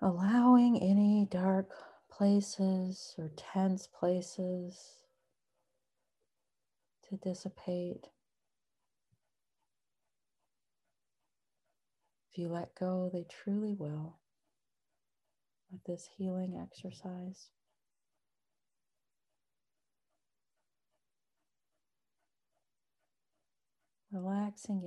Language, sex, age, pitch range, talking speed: English, female, 40-59, 180-200 Hz, 50 wpm